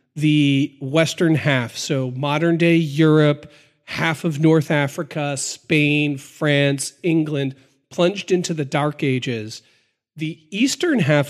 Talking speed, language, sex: 115 wpm, English, male